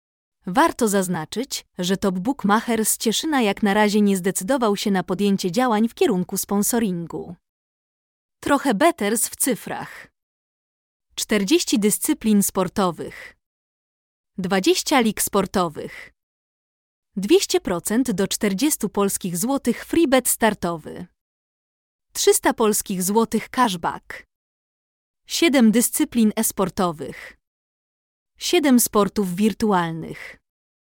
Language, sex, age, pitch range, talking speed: Polish, female, 20-39, 195-250 Hz, 90 wpm